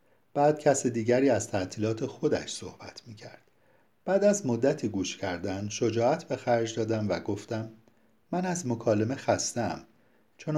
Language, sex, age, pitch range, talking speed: Persian, male, 50-69, 100-135 Hz, 135 wpm